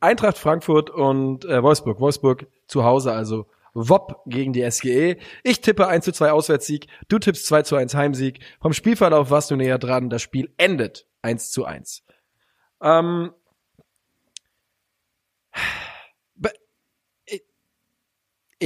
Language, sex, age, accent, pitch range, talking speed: English, male, 20-39, German, 125-165 Hz, 100 wpm